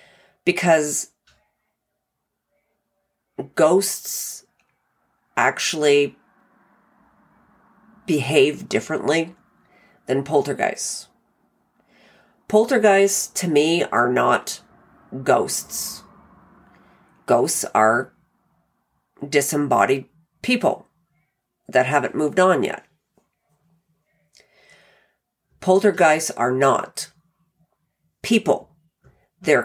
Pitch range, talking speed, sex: 135-165 Hz, 55 wpm, female